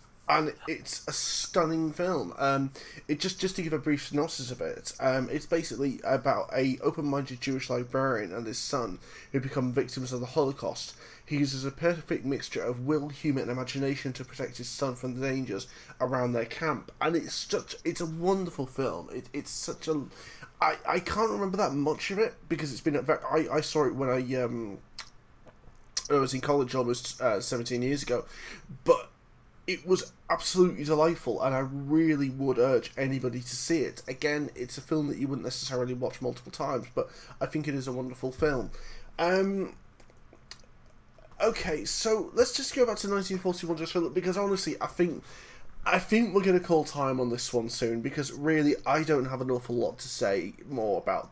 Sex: male